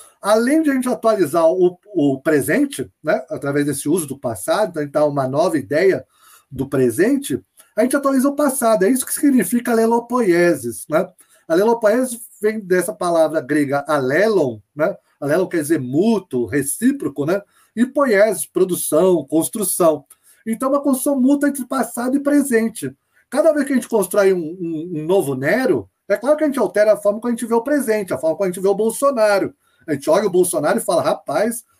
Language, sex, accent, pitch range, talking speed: Portuguese, male, Brazilian, 160-270 Hz, 185 wpm